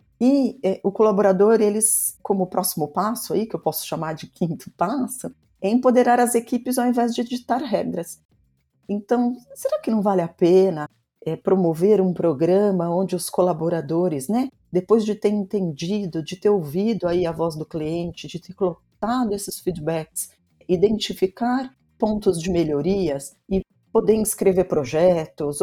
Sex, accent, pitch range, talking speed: female, Brazilian, 165-220 Hz, 150 wpm